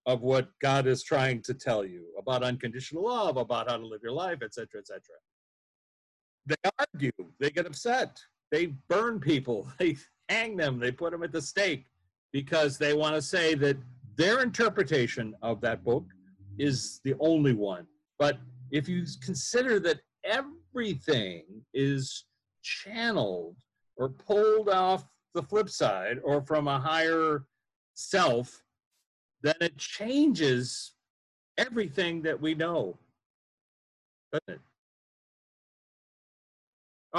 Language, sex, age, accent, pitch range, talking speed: English, male, 50-69, American, 130-185 Hz, 130 wpm